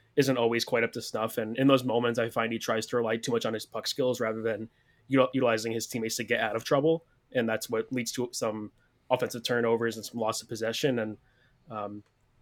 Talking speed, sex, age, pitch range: 225 wpm, male, 20-39, 110-130 Hz